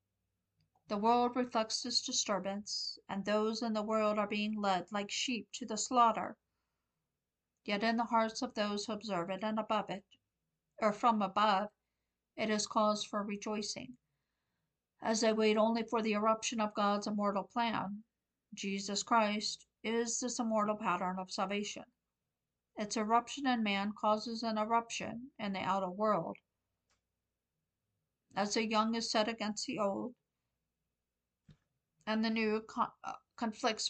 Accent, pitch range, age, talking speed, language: American, 195-230 Hz, 50-69, 140 wpm, English